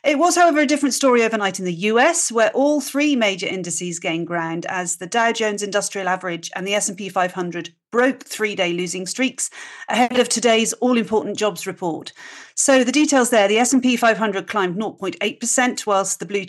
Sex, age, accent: female, 40-59, British